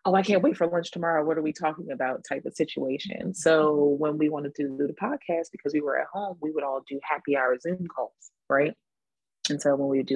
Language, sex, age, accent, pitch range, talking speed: English, female, 30-49, American, 140-165 Hz, 255 wpm